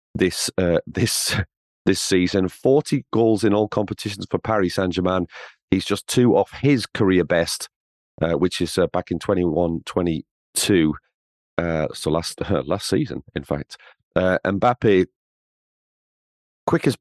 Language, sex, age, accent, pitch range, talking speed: English, male, 40-59, British, 85-110 Hz, 150 wpm